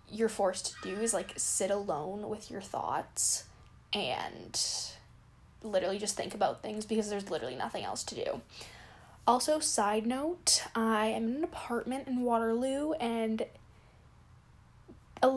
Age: 10-29